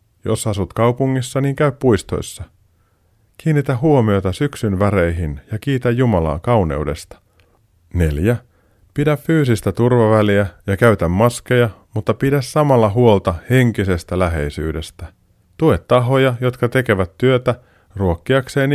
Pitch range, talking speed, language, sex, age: 95-125 Hz, 105 wpm, Finnish, male, 30-49